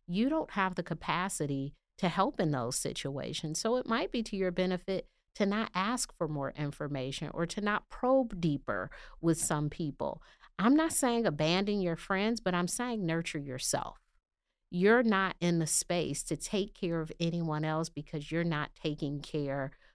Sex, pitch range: female, 150-195 Hz